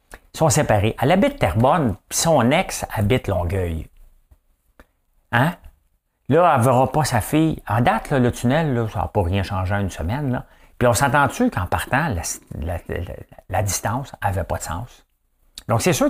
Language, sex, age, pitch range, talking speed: English, male, 60-79, 90-125 Hz, 185 wpm